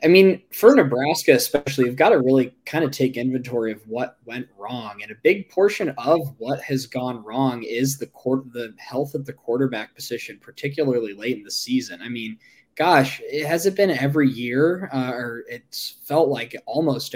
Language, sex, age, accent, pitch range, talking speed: English, male, 20-39, American, 120-150 Hz, 190 wpm